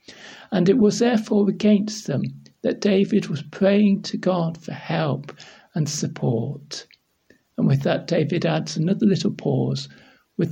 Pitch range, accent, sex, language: 160-210 Hz, British, male, English